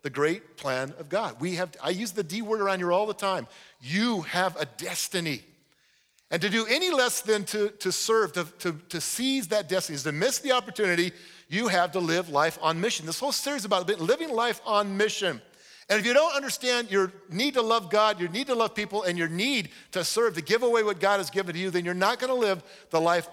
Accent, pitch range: American, 170-230 Hz